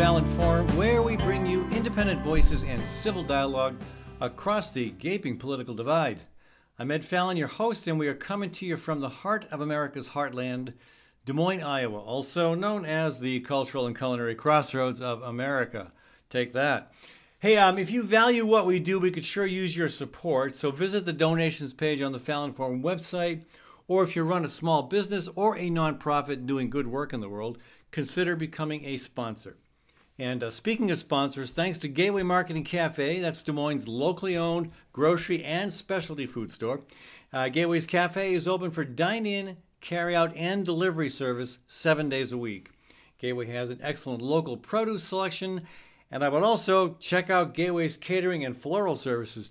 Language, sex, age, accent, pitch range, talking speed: English, male, 60-79, American, 135-180 Hz, 175 wpm